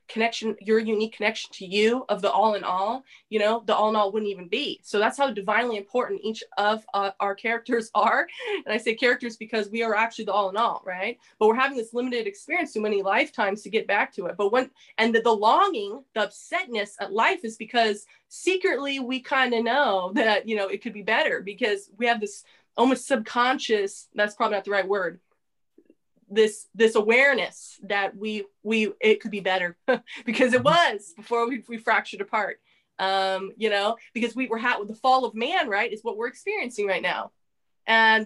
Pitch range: 210-250 Hz